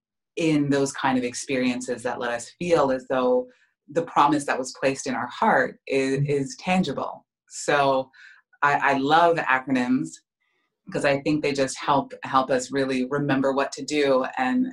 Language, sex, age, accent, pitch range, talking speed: English, female, 30-49, American, 130-160 Hz, 165 wpm